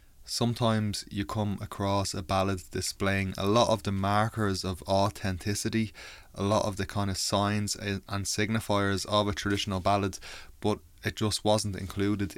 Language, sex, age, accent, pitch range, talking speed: English, male, 20-39, Irish, 90-100 Hz, 155 wpm